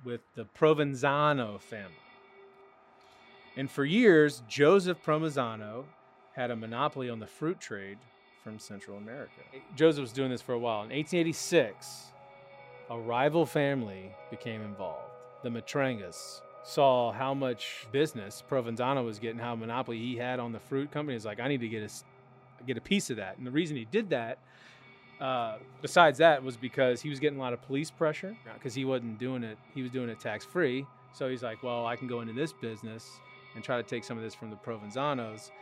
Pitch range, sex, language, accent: 115-145 Hz, male, English, American